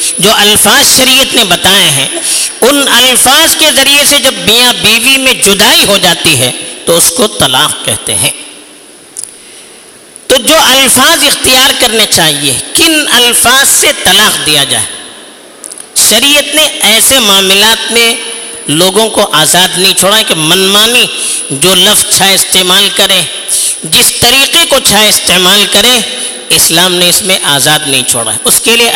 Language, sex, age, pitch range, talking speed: Urdu, female, 50-69, 185-270 Hz, 145 wpm